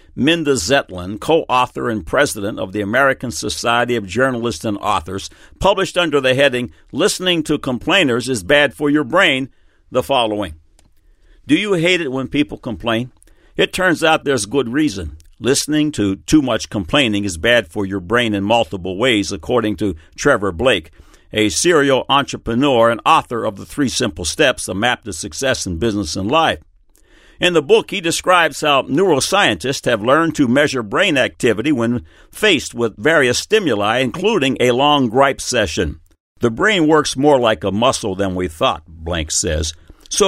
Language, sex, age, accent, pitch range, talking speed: English, male, 60-79, American, 100-145 Hz, 165 wpm